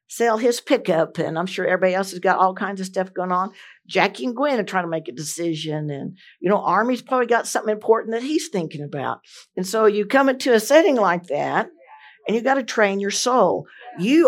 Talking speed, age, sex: 225 wpm, 60-79, female